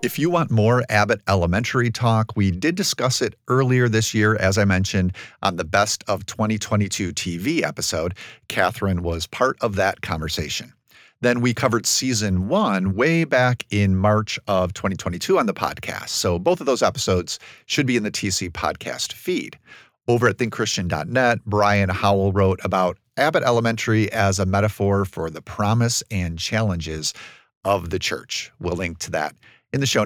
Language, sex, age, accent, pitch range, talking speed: English, male, 40-59, American, 95-120 Hz, 165 wpm